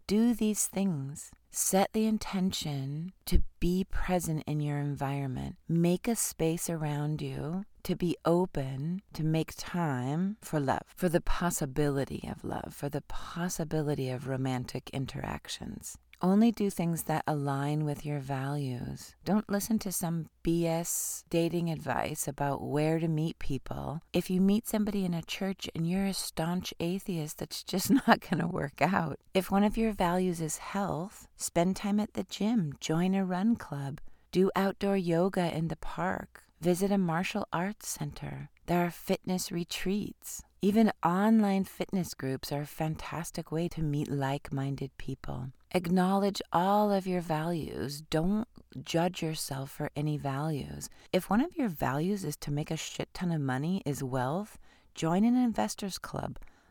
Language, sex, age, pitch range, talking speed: English, female, 40-59, 145-190 Hz, 155 wpm